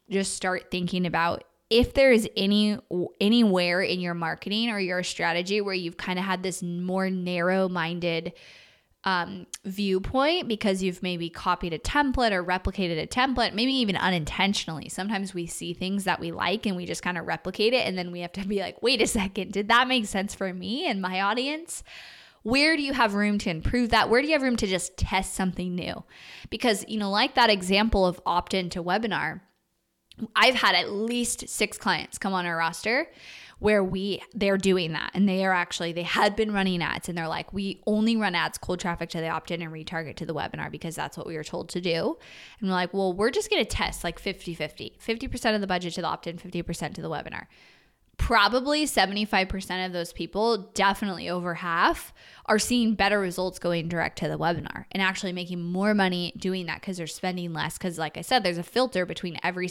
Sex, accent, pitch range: female, American, 175-210 Hz